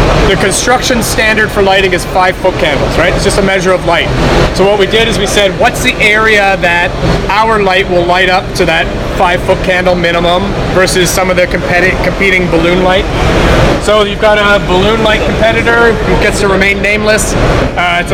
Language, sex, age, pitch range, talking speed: English, male, 30-49, 170-205 Hz, 185 wpm